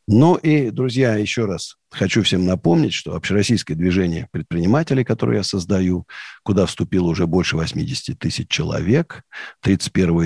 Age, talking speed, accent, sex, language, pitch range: 50-69, 135 wpm, native, male, Russian, 90-125 Hz